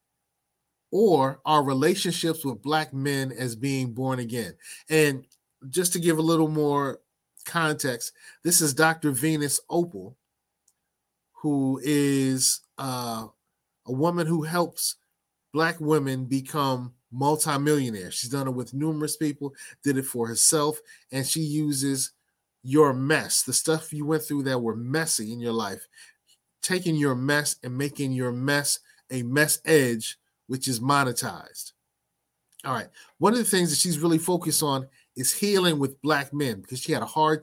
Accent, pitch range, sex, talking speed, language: American, 130-155 Hz, male, 150 wpm, English